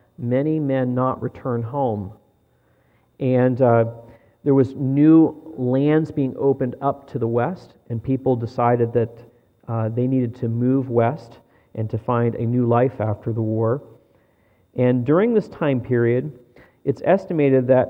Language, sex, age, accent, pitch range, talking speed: English, male, 40-59, American, 115-140 Hz, 150 wpm